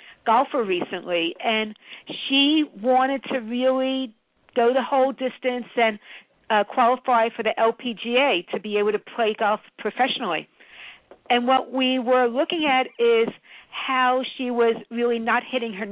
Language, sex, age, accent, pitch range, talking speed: English, female, 50-69, American, 220-270 Hz, 145 wpm